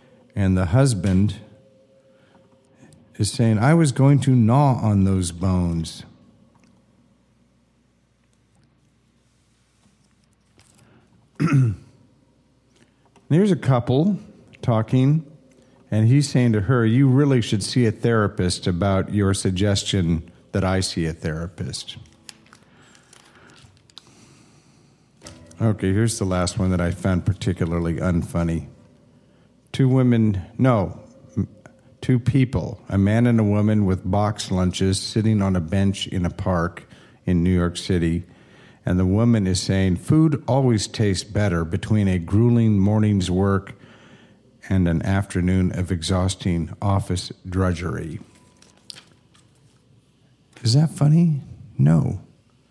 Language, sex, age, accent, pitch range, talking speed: English, male, 50-69, American, 95-130 Hz, 110 wpm